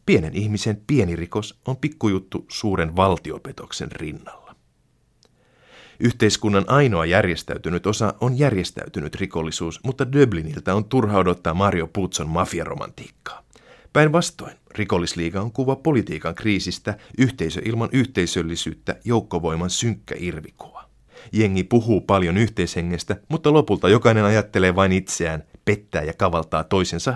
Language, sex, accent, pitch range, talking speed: Finnish, male, native, 85-115 Hz, 110 wpm